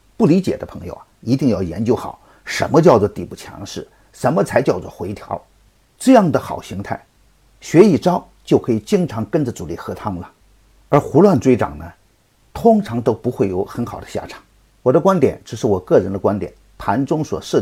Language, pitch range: Chinese, 105-145 Hz